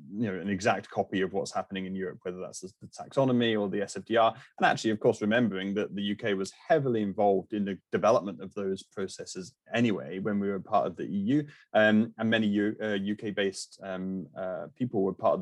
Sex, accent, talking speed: male, British, 210 wpm